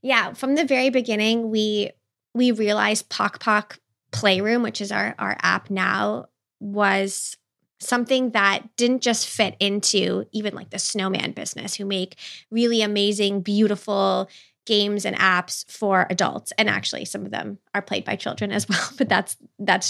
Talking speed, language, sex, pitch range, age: 160 wpm, English, female, 195-230 Hz, 20-39